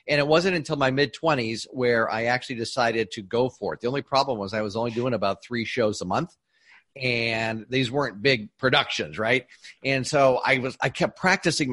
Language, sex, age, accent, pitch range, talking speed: English, male, 40-59, American, 115-150 Hz, 205 wpm